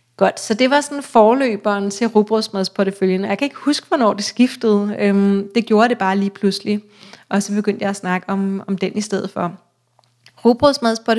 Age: 30-49